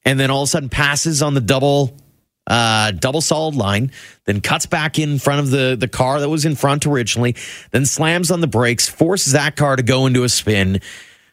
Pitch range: 110-145 Hz